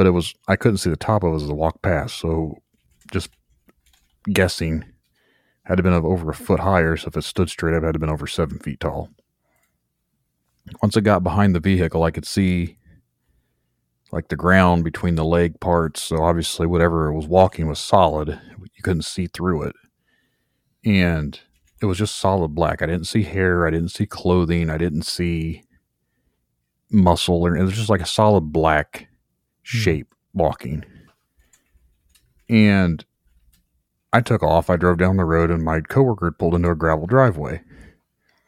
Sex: male